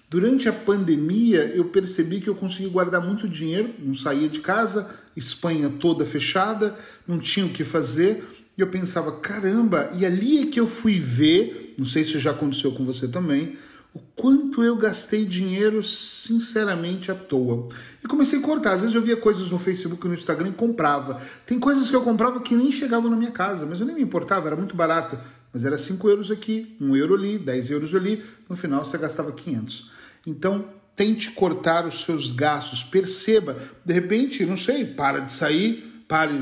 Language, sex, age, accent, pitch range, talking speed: Portuguese, male, 40-59, Brazilian, 150-215 Hz, 190 wpm